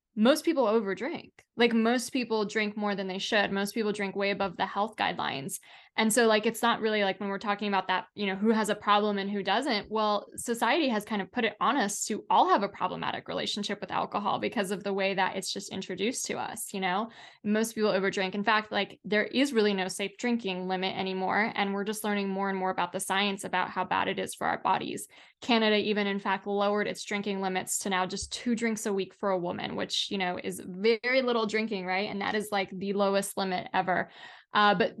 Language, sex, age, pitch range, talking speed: English, female, 10-29, 195-225 Hz, 240 wpm